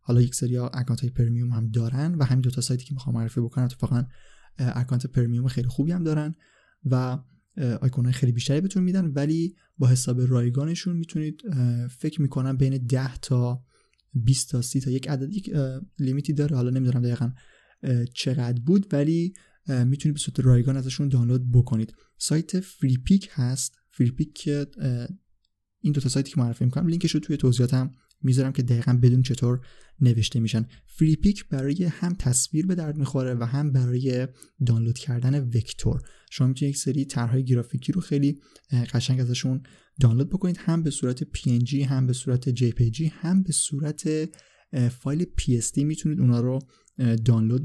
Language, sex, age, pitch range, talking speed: Persian, male, 20-39, 125-150 Hz, 160 wpm